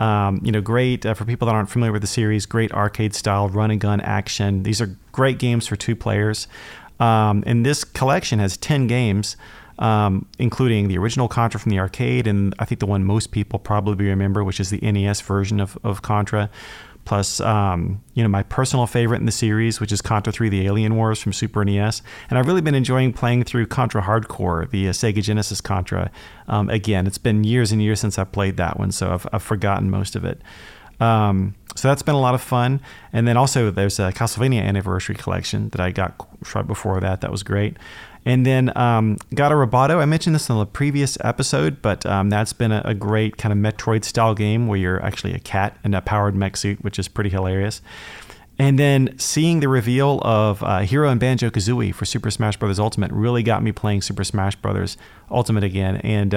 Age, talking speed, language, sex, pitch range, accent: 40-59, 210 wpm, English, male, 100-120 Hz, American